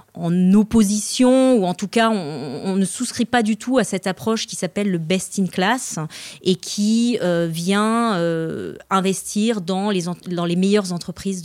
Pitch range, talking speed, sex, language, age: 180-210 Hz, 185 wpm, female, French, 30-49